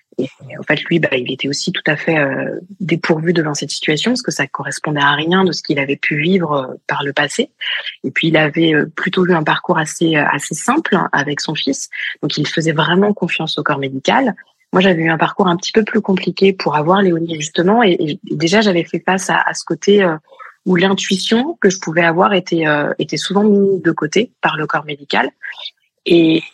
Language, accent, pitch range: French, French, 155-190 Hz